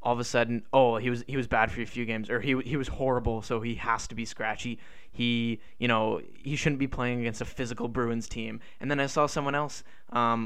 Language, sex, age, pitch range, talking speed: English, male, 20-39, 115-135 Hz, 250 wpm